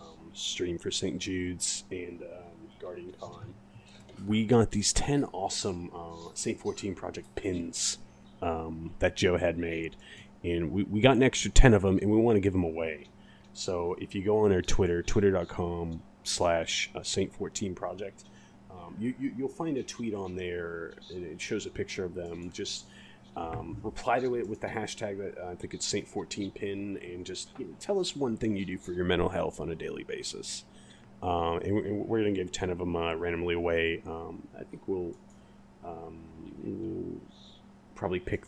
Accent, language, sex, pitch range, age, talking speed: American, English, male, 85-105 Hz, 30-49, 180 wpm